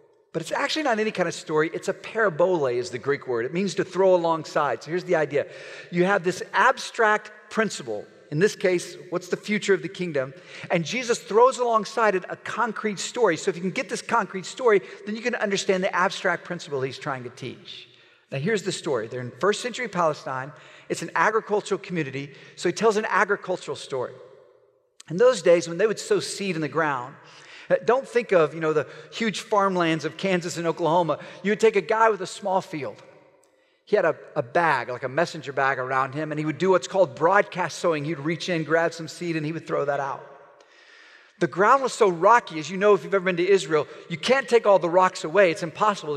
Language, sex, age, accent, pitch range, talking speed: English, male, 50-69, American, 170-235 Hz, 220 wpm